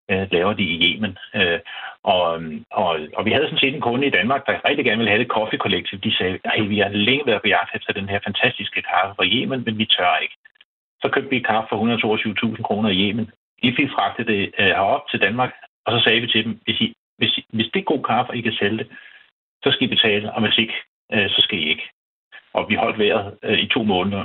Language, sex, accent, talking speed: Danish, male, native, 240 wpm